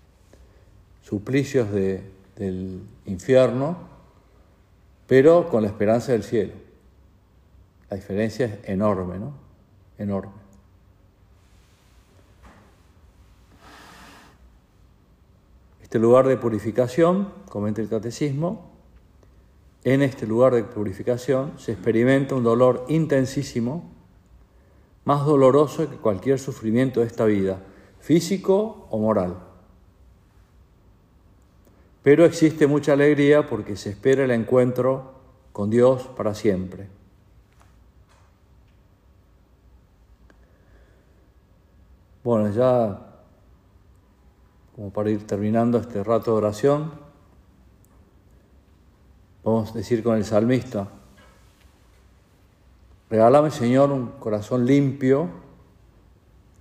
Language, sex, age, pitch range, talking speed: Spanish, male, 50-69, 95-125 Hz, 80 wpm